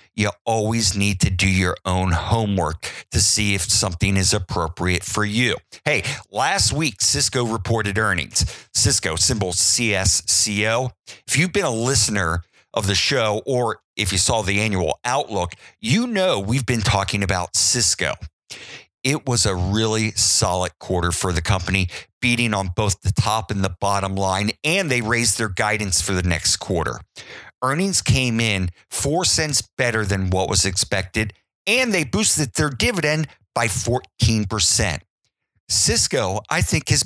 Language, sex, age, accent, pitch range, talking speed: English, male, 50-69, American, 95-125 Hz, 155 wpm